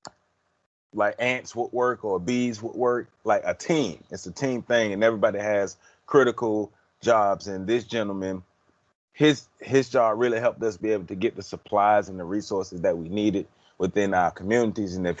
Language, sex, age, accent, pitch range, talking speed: English, male, 30-49, American, 100-120 Hz, 180 wpm